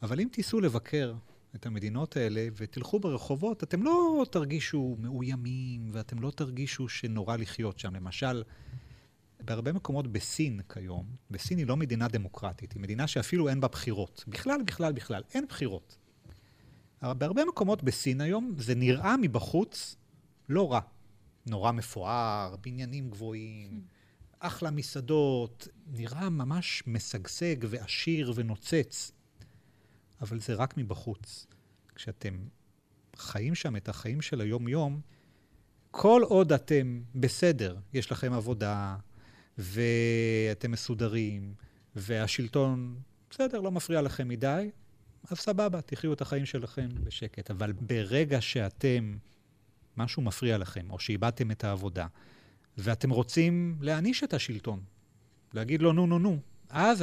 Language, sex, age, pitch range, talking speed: Hebrew, male, 30-49, 110-145 Hz, 120 wpm